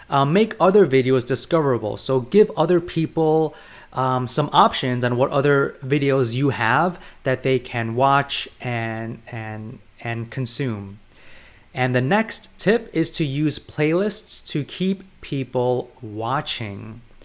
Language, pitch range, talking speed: English, 120-150 Hz, 130 wpm